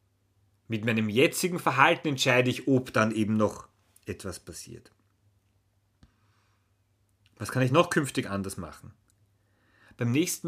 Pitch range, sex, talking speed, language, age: 105-150 Hz, male, 120 wpm, German, 30-49